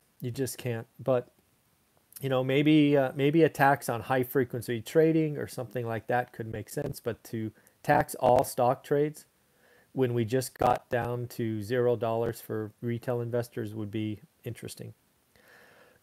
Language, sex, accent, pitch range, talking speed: English, male, American, 115-150 Hz, 160 wpm